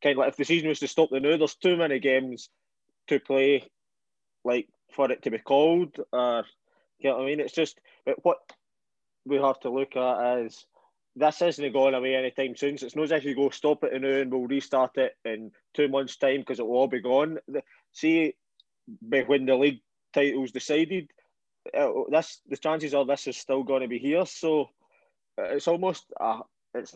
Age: 20-39